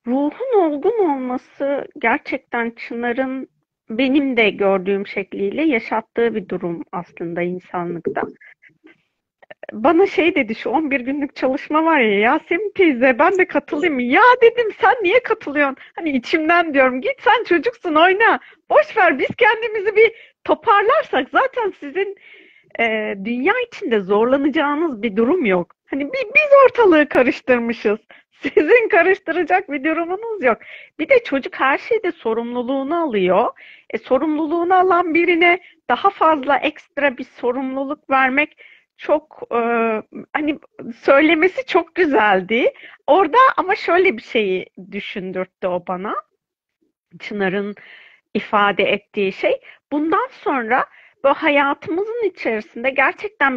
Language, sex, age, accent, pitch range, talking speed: Turkish, female, 40-59, native, 235-360 Hz, 120 wpm